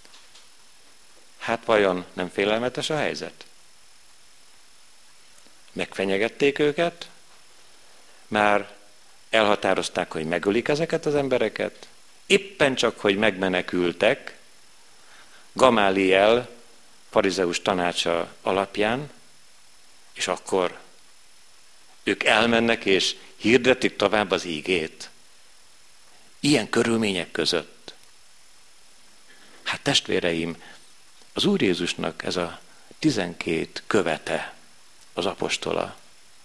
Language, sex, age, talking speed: Hungarian, male, 50-69, 75 wpm